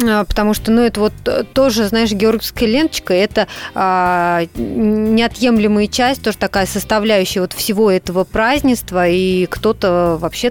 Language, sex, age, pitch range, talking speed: Russian, female, 20-39, 190-230 Hz, 130 wpm